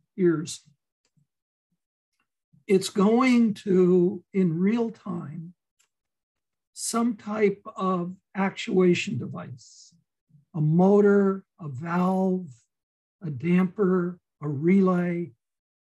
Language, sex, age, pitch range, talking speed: English, male, 60-79, 170-210 Hz, 70 wpm